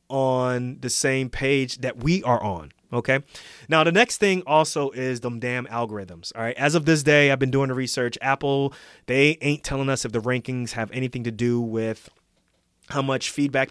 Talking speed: 195 wpm